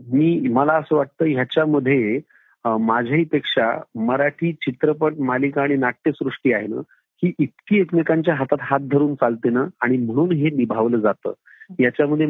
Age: 40-59